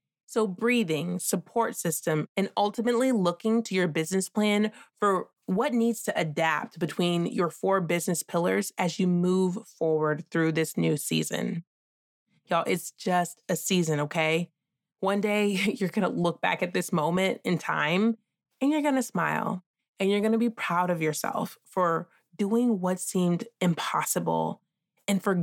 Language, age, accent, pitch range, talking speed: English, 20-39, American, 170-215 Hz, 160 wpm